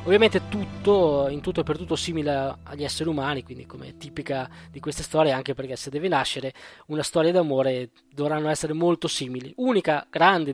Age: 20-39